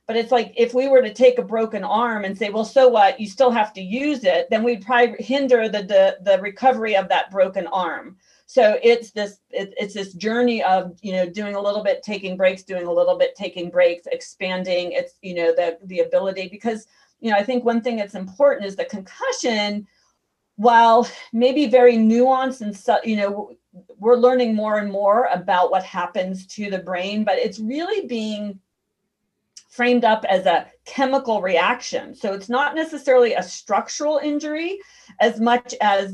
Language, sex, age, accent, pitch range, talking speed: English, female, 40-59, American, 195-250 Hz, 185 wpm